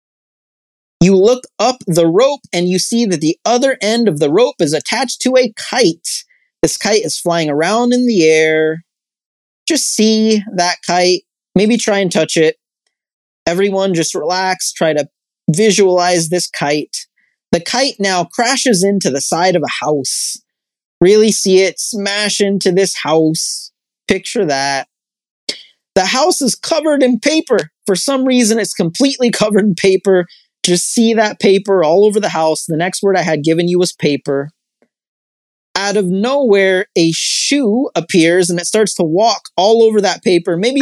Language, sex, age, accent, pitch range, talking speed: English, male, 30-49, American, 170-225 Hz, 165 wpm